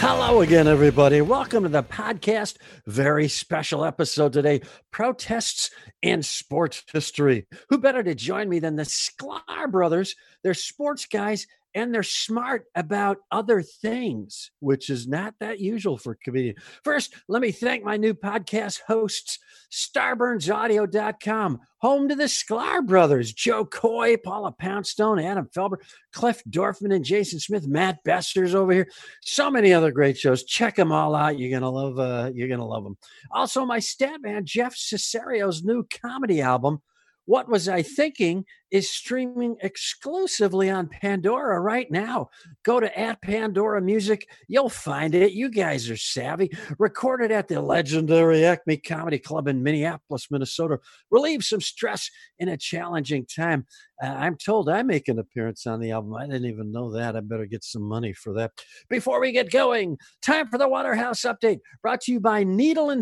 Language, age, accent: English, 50-69, American